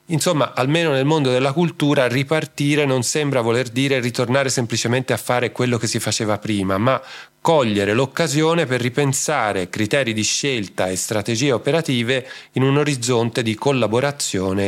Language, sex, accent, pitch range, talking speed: Italian, male, native, 110-140 Hz, 145 wpm